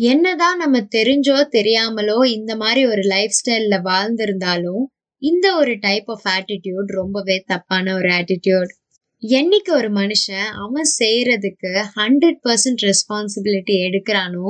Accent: native